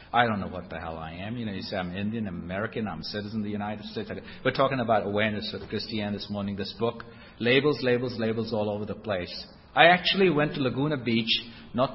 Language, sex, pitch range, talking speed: English, male, 110-130 Hz, 230 wpm